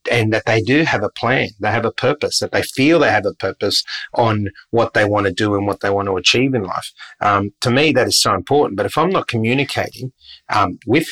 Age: 30-49